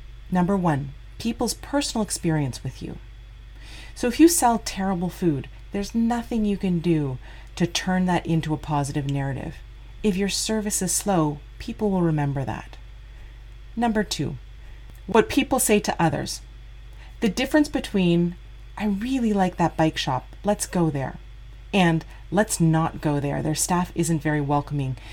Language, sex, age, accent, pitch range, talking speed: English, female, 30-49, American, 135-190 Hz, 150 wpm